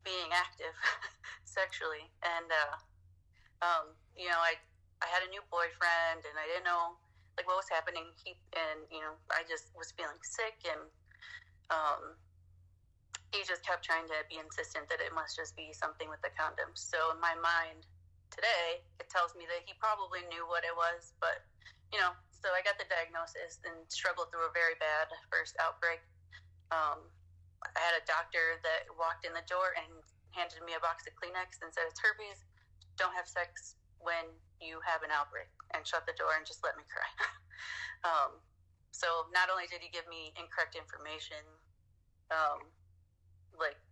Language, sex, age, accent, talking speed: English, female, 30-49, American, 180 wpm